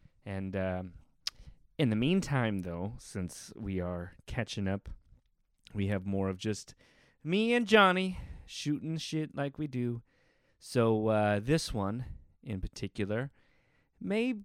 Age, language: 30-49, English